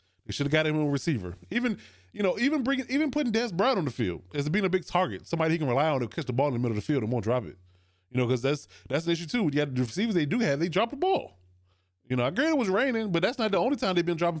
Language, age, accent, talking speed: English, 20-39, American, 320 wpm